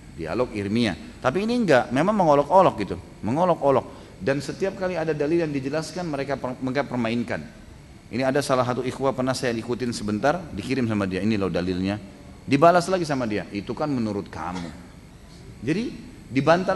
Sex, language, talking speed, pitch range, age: male, Indonesian, 160 wpm, 95-145 Hz, 30-49